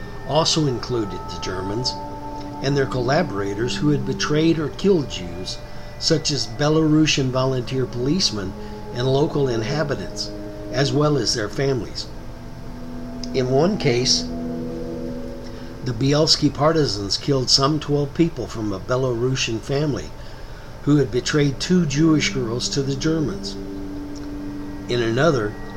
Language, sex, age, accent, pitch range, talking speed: English, male, 60-79, American, 110-145 Hz, 120 wpm